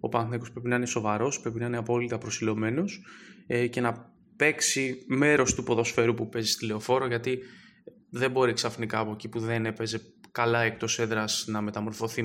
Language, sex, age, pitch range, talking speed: Greek, male, 20-39, 110-125 Hz, 175 wpm